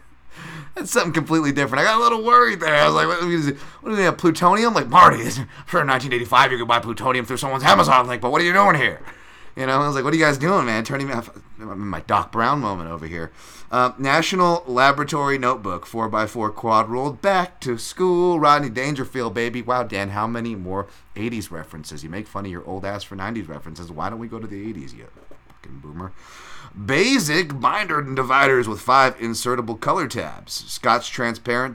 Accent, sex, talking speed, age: American, male, 205 wpm, 30-49